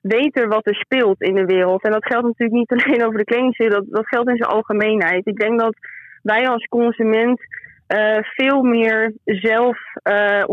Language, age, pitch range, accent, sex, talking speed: Dutch, 20-39, 210-245 Hz, Dutch, female, 190 wpm